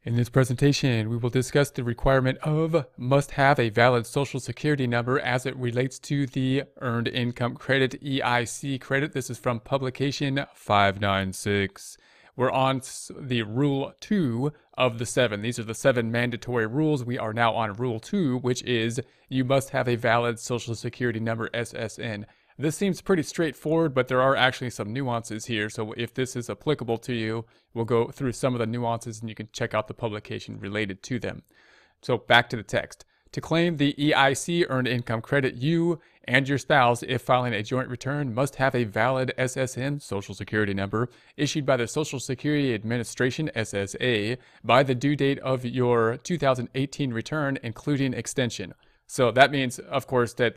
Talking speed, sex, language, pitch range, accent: 180 wpm, male, English, 115-140 Hz, American